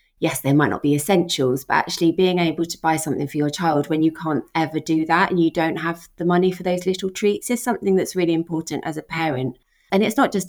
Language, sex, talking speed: English, female, 250 wpm